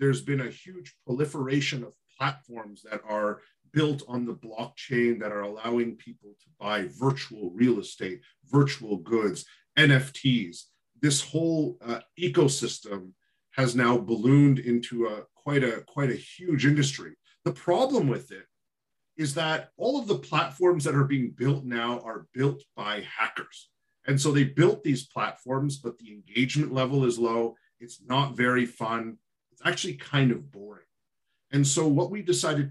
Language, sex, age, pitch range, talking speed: English, male, 40-59, 120-140 Hz, 155 wpm